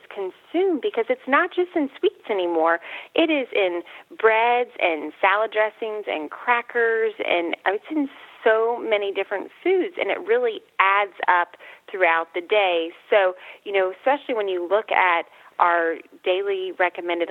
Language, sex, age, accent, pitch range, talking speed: English, female, 30-49, American, 180-250 Hz, 150 wpm